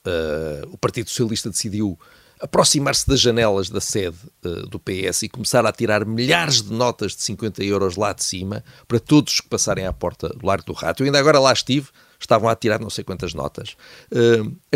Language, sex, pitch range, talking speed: Portuguese, male, 95-135 Hz, 200 wpm